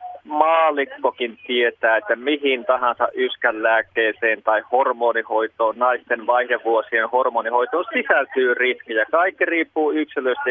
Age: 30-49